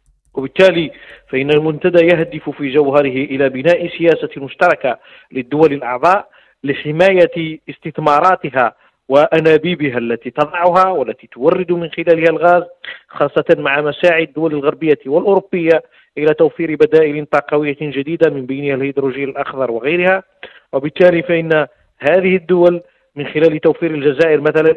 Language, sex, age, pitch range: Arabic, male, 40-59, 145-175 Hz